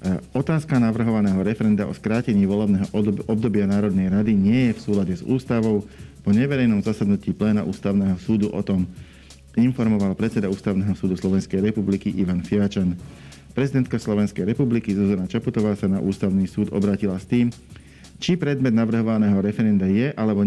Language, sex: Slovak, male